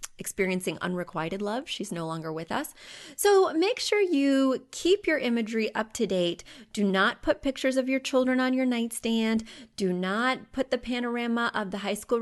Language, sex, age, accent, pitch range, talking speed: English, female, 30-49, American, 190-255 Hz, 180 wpm